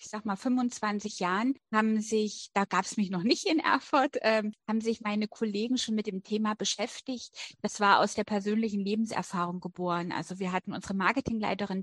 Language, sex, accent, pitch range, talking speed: German, female, German, 195-225 Hz, 190 wpm